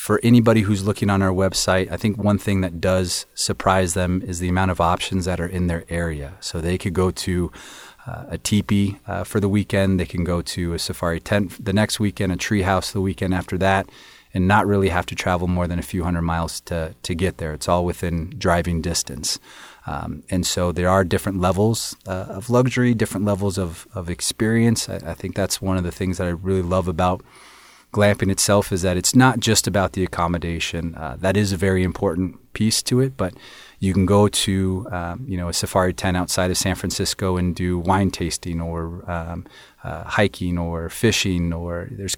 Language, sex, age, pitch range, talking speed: English, male, 30-49, 90-100 Hz, 210 wpm